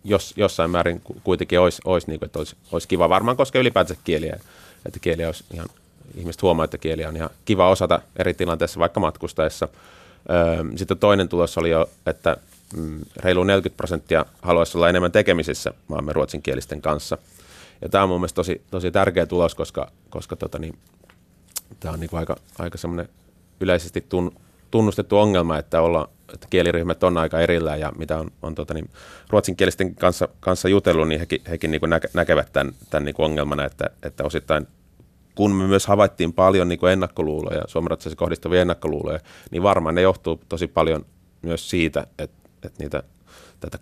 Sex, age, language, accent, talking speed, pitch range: male, 30-49, Finnish, native, 165 wpm, 80-90 Hz